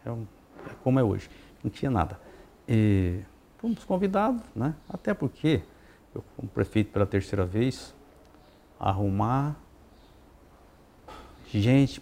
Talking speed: 105 wpm